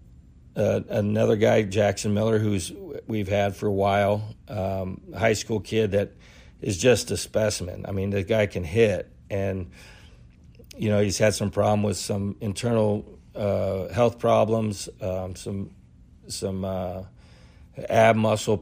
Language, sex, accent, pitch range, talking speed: English, male, American, 100-110 Hz, 145 wpm